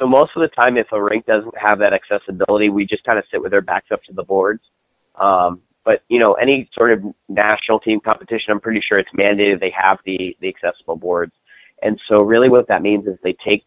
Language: English